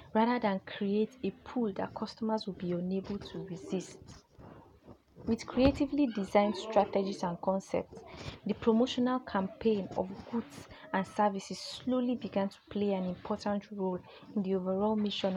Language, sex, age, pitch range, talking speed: English, female, 20-39, 195-235 Hz, 140 wpm